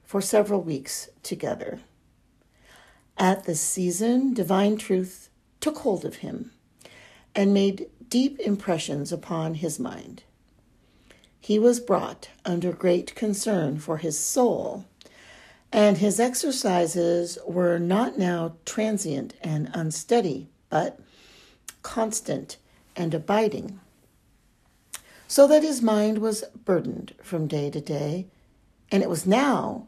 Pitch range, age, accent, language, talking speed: 170-225 Hz, 50-69, American, English, 110 wpm